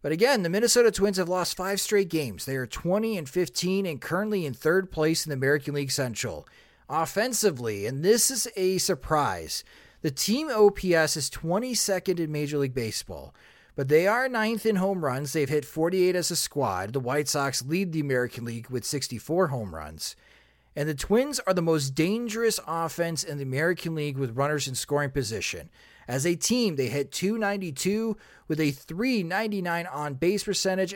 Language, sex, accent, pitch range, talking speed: English, male, American, 140-195 Hz, 180 wpm